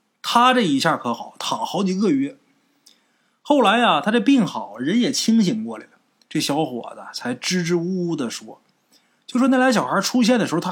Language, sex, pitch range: Chinese, male, 180-255 Hz